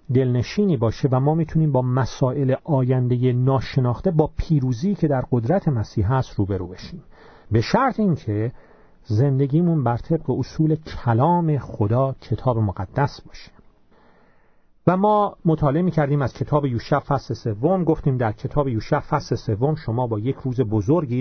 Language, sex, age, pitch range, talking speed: Persian, male, 40-59, 115-150 Hz, 140 wpm